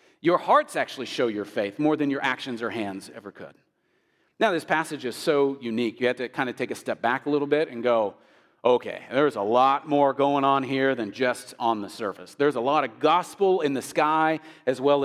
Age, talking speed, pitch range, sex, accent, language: 40-59, 225 wpm, 125-155 Hz, male, American, English